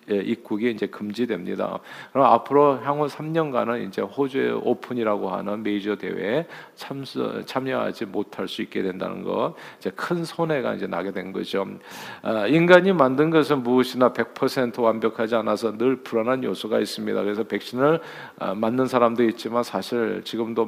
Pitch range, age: 110-135 Hz, 50-69